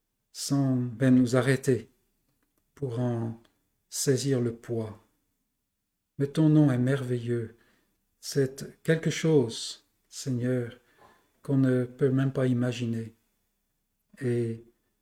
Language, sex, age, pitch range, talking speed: French, male, 50-69, 125-145 Hz, 95 wpm